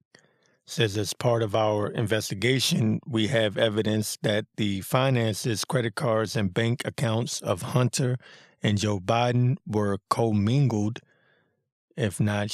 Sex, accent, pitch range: male, American, 105-125 Hz